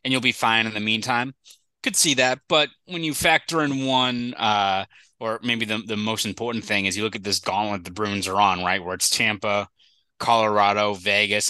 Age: 20-39